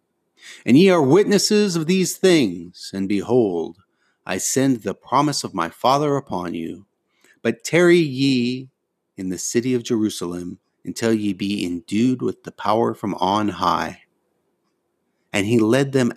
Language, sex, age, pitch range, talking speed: English, male, 30-49, 100-130 Hz, 150 wpm